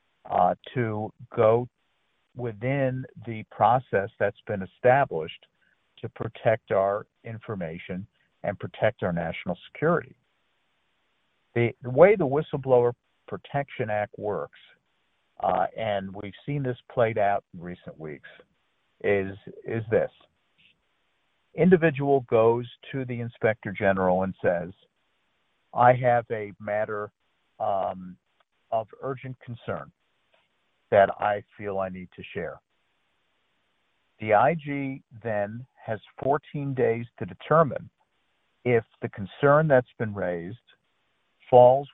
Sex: male